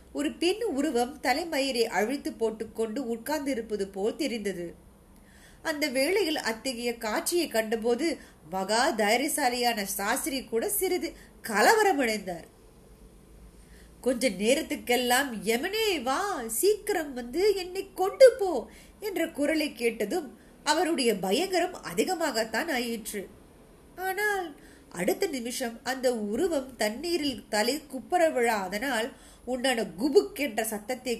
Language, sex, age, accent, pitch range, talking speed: Tamil, female, 30-49, native, 220-300 Hz, 60 wpm